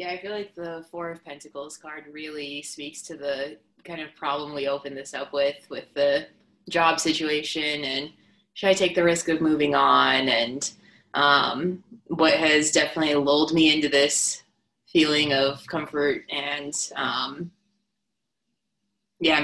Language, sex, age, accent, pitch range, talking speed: English, female, 20-39, American, 140-165 Hz, 150 wpm